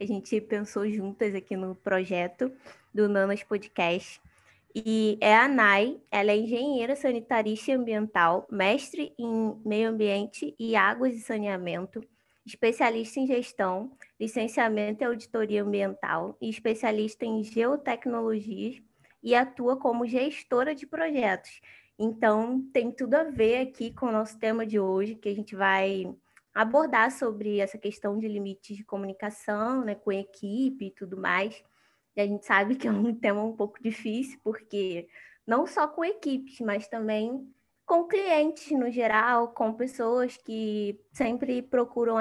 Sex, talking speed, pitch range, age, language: female, 145 wpm, 210-250 Hz, 20-39, Portuguese